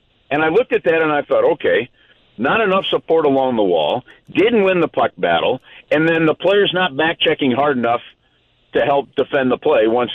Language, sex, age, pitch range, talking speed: English, male, 50-69, 145-210 Hz, 200 wpm